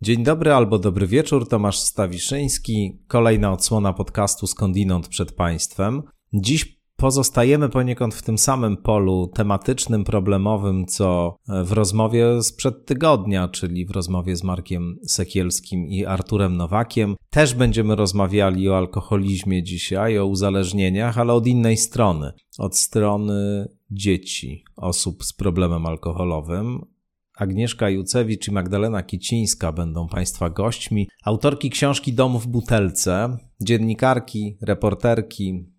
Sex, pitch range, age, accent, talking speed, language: male, 95-115 Hz, 40-59, native, 115 wpm, Polish